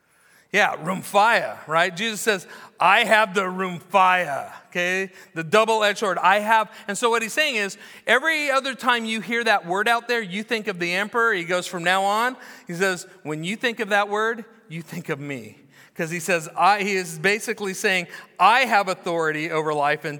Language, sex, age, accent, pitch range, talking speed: English, male, 40-59, American, 160-215 Hz, 195 wpm